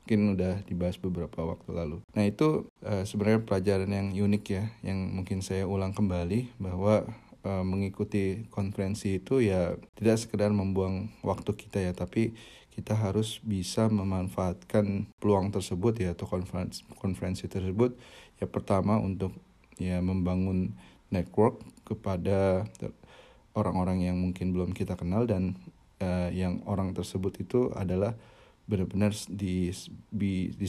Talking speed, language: 130 wpm, Indonesian